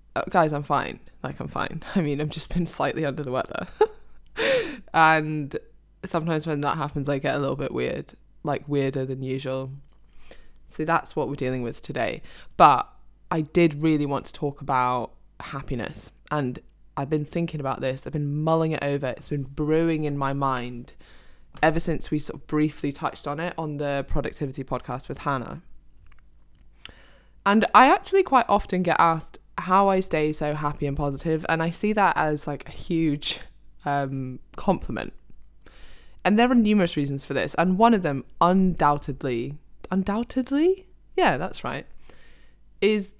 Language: English